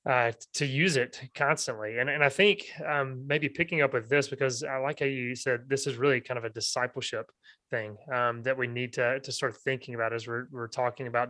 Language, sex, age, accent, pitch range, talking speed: English, male, 30-49, American, 125-145 Hz, 230 wpm